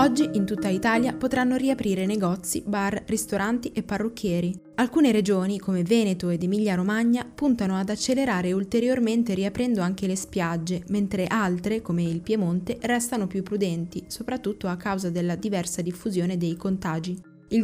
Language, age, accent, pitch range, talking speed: Italian, 20-39, native, 185-235 Hz, 145 wpm